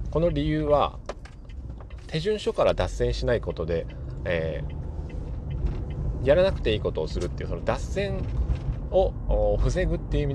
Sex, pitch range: male, 80-130 Hz